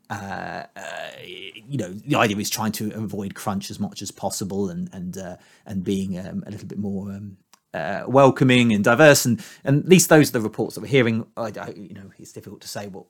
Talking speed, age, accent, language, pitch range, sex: 230 wpm, 30-49, British, English, 110-150 Hz, male